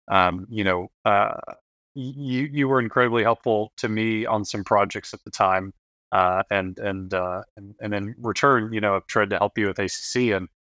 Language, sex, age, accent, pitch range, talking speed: English, male, 30-49, American, 95-115 Hz, 195 wpm